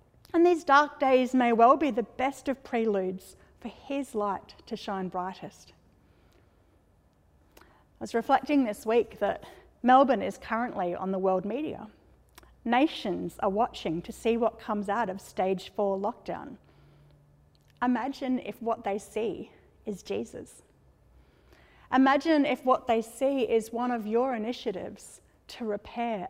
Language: English